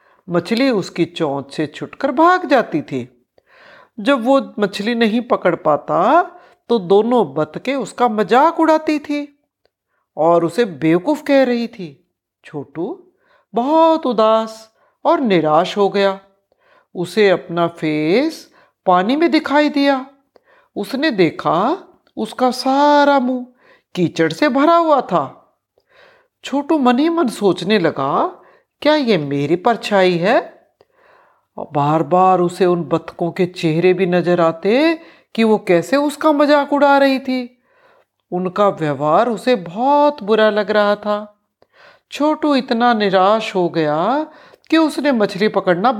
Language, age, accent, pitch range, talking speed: Hindi, 60-79, native, 180-290 Hz, 125 wpm